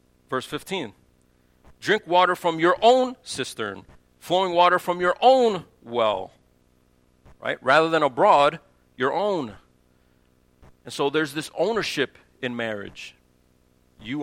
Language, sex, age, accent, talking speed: English, male, 50-69, American, 120 wpm